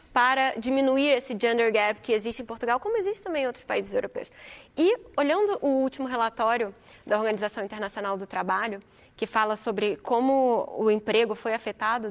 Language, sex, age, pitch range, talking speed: Portuguese, female, 20-39, 215-255 Hz, 170 wpm